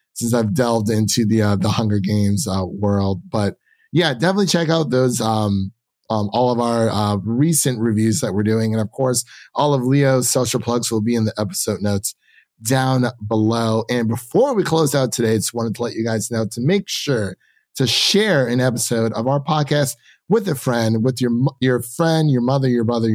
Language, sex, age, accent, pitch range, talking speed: English, male, 30-49, American, 110-155 Hz, 200 wpm